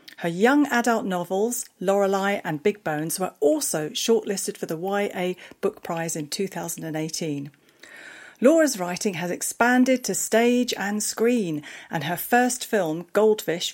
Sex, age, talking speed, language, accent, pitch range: female, 40-59, 135 wpm, English, British, 170-230 Hz